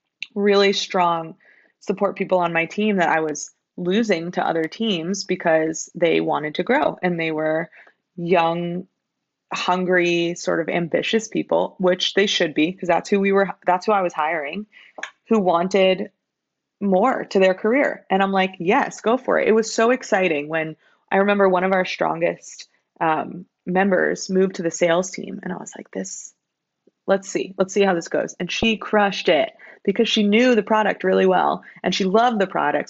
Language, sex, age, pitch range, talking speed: English, female, 20-39, 170-205 Hz, 185 wpm